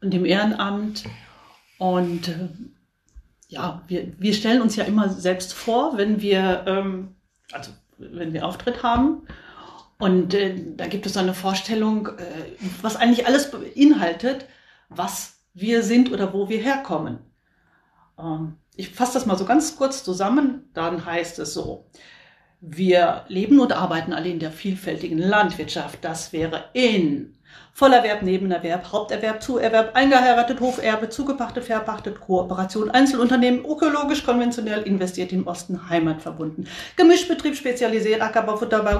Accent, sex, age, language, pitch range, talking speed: German, female, 40-59, German, 180-245 Hz, 130 wpm